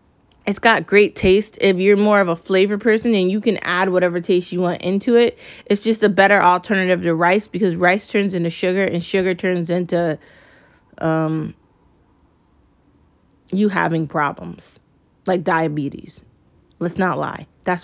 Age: 20-39